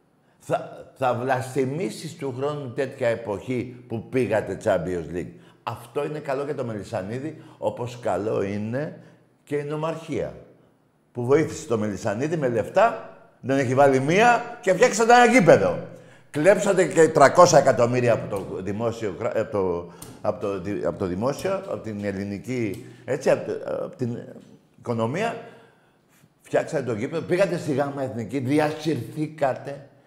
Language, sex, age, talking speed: Greek, male, 50-69, 130 wpm